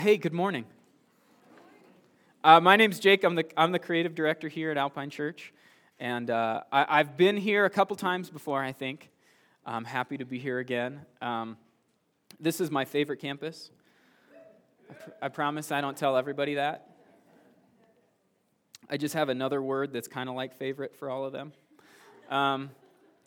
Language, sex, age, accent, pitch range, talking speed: English, male, 20-39, American, 130-180 Hz, 160 wpm